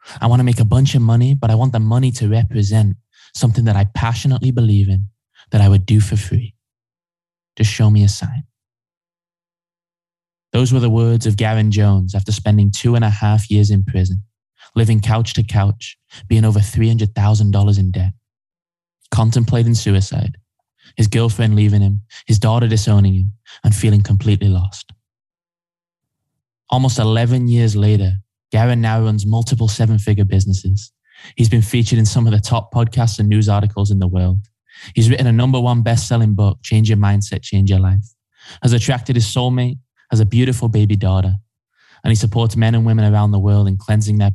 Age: 10-29